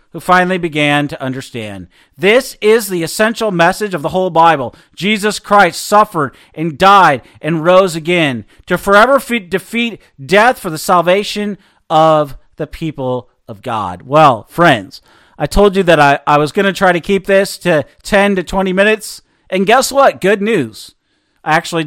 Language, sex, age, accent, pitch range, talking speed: English, male, 40-59, American, 160-215 Hz, 165 wpm